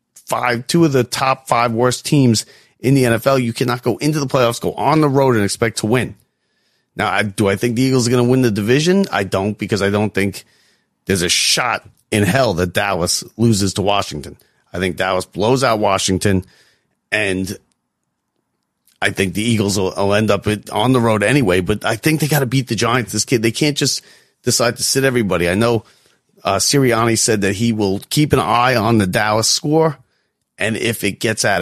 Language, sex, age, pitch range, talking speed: English, male, 40-59, 100-130 Hz, 215 wpm